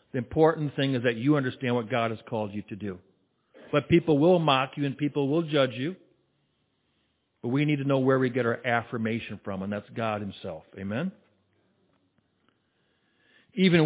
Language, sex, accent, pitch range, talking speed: English, male, American, 120-155 Hz, 180 wpm